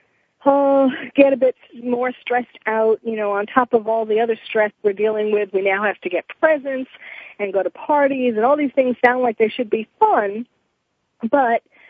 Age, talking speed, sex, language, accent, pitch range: 40-59, 200 wpm, female, English, American, 200-250 Hz